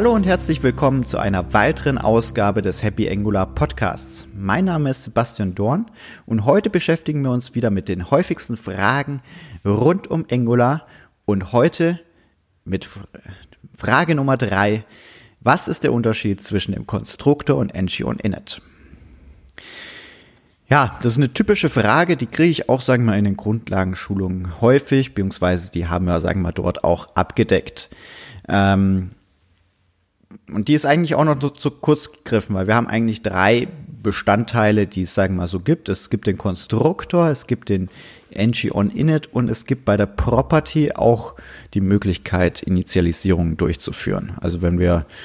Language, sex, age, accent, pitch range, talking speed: German, male, 30-49, German, 95-140 Hz, 155 wpm